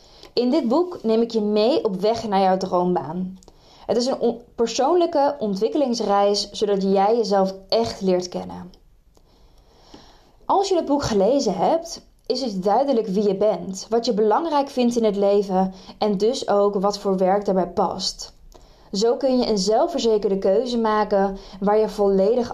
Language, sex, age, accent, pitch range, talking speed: Dutch, female, 20-39, Dutch, 195-235 Hz, 160 wpm